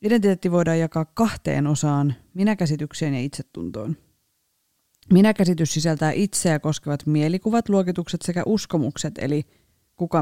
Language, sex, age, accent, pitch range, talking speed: Finnish, female, 20-39, native, 150-185 Hz, 105 wpm